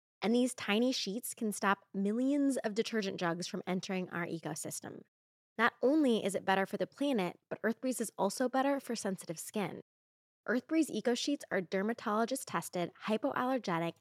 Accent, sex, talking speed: American, female, 150 wpm